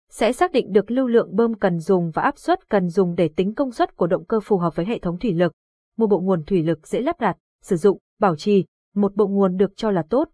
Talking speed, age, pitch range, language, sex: 275 wpm, 20-39, 180-235 Hz, Vietnamese, female